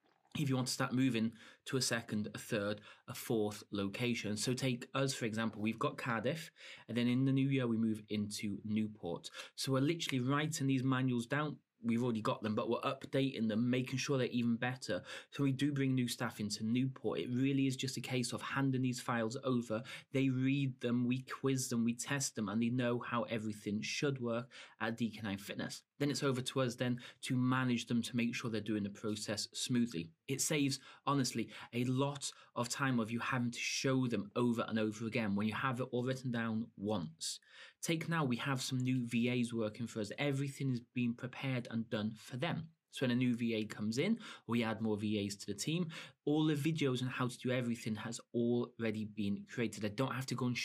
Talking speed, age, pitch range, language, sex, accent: 215 wpm, 30-49, 110-135 Hz, English, male, British